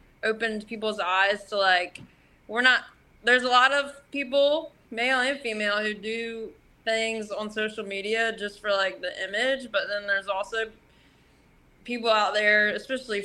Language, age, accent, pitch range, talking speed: English, 20-39, American, 200-235 Hz, 155 wpm